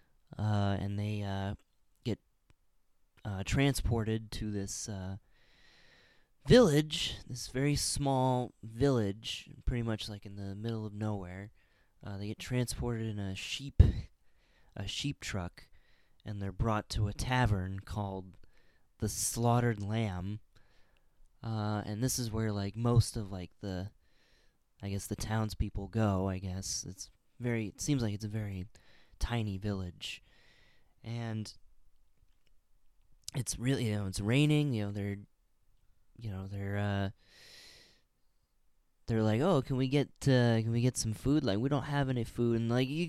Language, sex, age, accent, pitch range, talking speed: English, male, 20-39, American, 95-115 Hz, 145 wpm